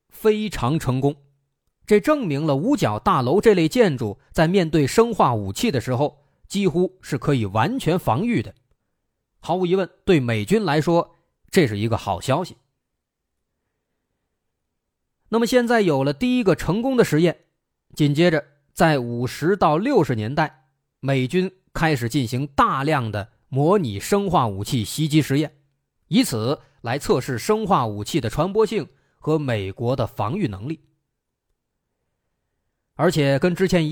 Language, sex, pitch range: Chinese, male, 125-185 Hz